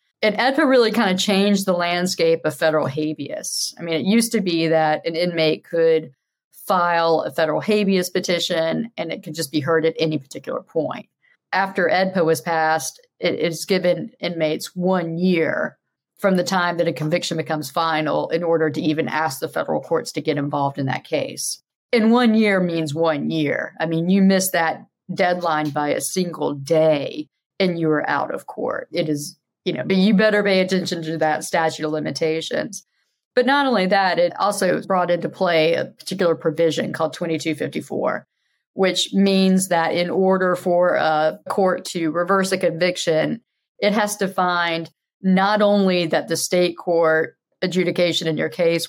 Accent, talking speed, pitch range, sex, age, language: American, 175 wpm, 160-190 Hz, female, 40-59, English